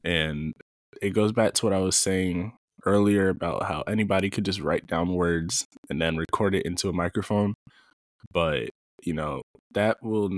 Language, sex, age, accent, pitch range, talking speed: English, male, 20-39, American, 85-110 Hz, 175 wpm